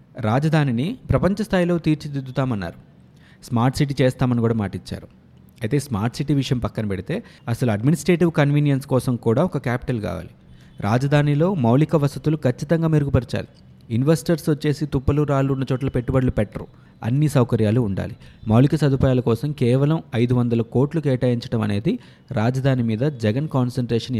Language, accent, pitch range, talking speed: Telugu, native, 115-150 Hz, 125 wpm